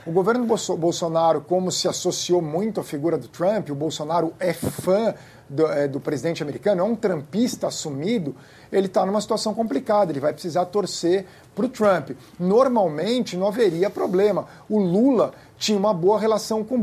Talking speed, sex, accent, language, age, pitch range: 170 wpm, male, Brazilian, Portuguese, 50-69, 165-205 Hz